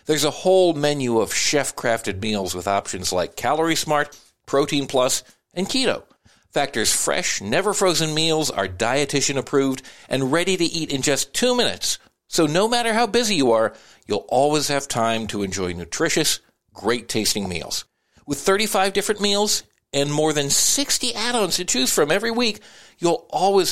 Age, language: 50-69, English